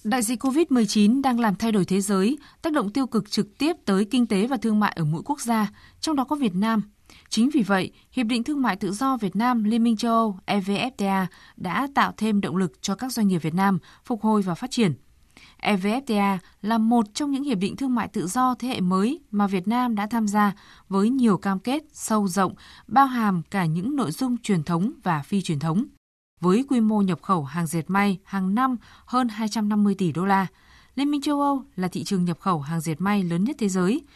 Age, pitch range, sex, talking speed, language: 20-39, 190-245 Hz, female, 230 wpm, Vietnamese